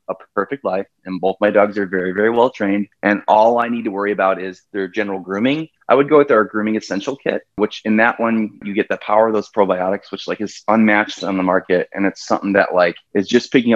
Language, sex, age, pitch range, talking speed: English, male, 30-49, 95-110 Hz, 250 wpm